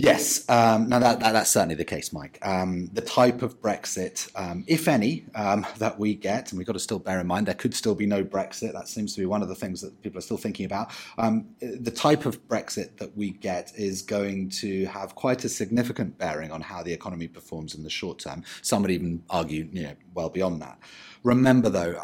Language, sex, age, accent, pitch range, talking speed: English, male, 30-49, British, 90-120 Hz, 235 wpm